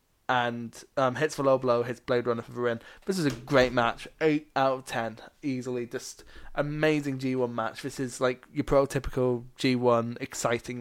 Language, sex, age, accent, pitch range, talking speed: English, male, 20-39, British, 120-145 Hz, 185 wpm